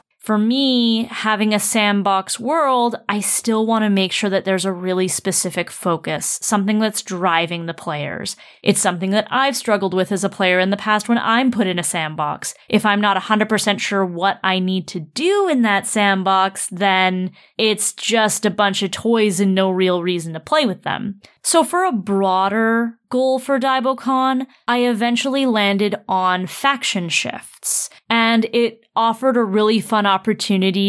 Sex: female